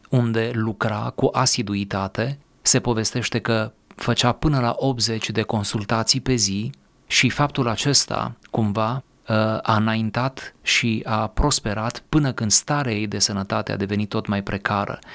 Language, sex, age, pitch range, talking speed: Romanian, male, 30-49, 105-125 Hz, 140 wpm